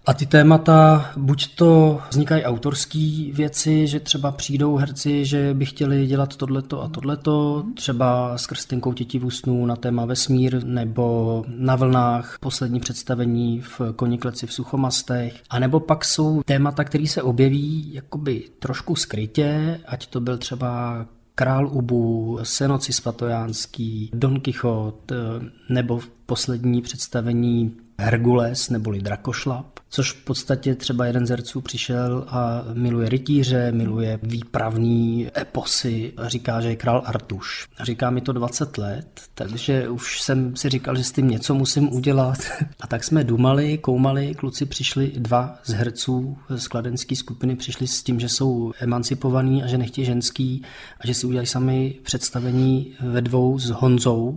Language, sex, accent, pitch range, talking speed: Czech, male, native, 120-140 Hz, 145 wpm